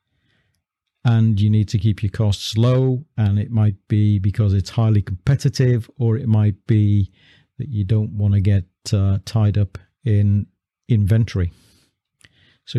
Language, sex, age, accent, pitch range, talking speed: English, male, 50-69, British, 100-115 Hz, 150 wpm